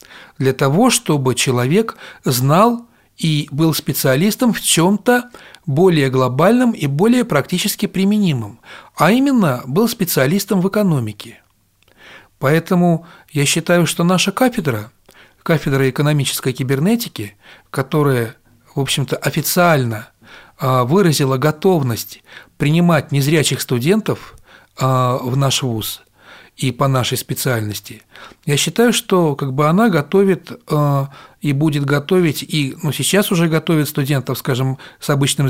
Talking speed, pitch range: 110 wpm, 135-180 Hz